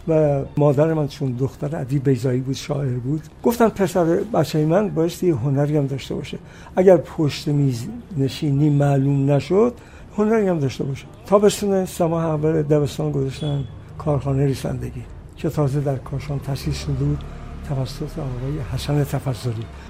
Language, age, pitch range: Persian, 60-79, 140-175 Hz